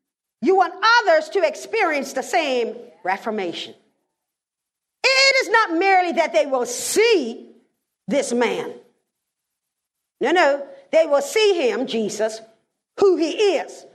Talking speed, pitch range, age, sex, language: 120 wpm, 290-410 Hz, 50-69, female, English